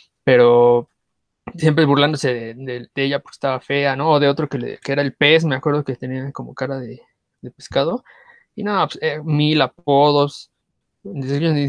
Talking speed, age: 185 wpm, 20-39